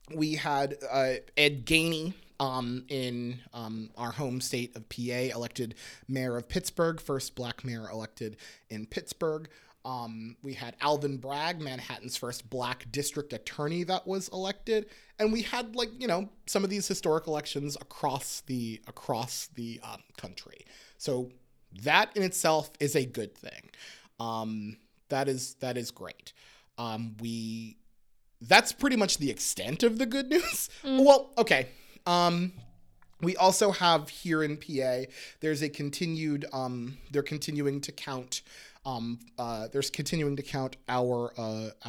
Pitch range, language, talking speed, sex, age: 120-160 Hz, English, 150 wpm, male, 30-49